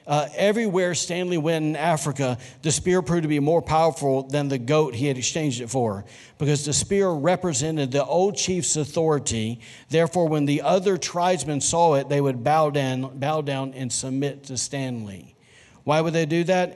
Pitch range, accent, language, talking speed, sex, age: 130-160 Hz, American, English, 185 wpm, male, 50-69